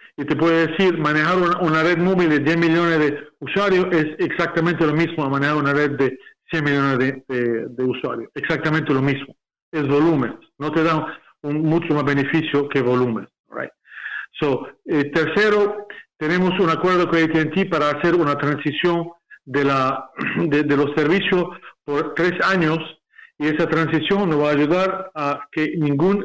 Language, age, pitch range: Spanish, 40-59, 145-175 Hz